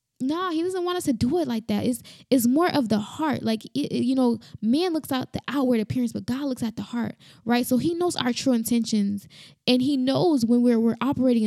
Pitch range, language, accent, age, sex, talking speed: 220-255 Hz, English, American, 10-29, female, 240 wpm